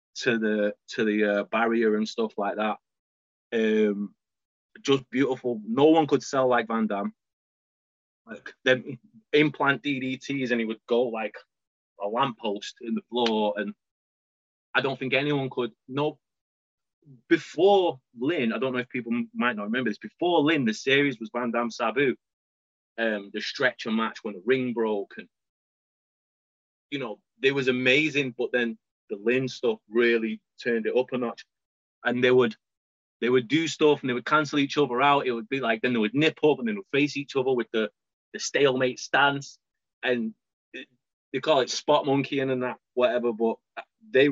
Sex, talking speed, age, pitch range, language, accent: male, 180 wpm, 20-39, 110-140 Hz, English, British